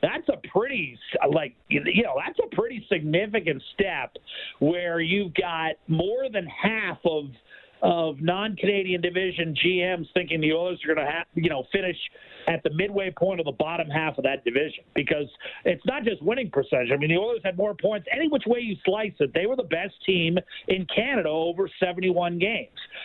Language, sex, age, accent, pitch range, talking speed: English, male, 50-69, American, 165-225 Hz, 185 wpm